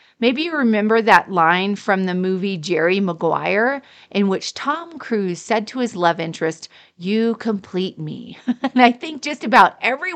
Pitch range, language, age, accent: 185-250 Hz, English, 40-59, American